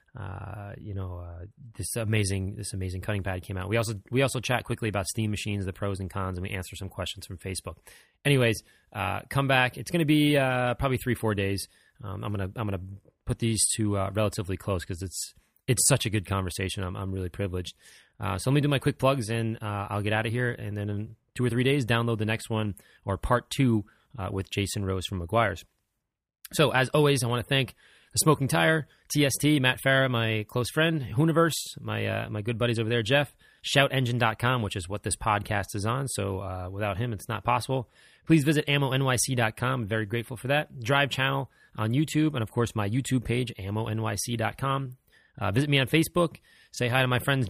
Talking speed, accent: 215 wpm, American